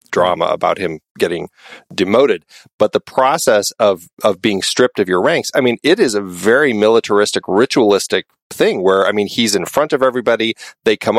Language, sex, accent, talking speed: English, male, American, 180 wpm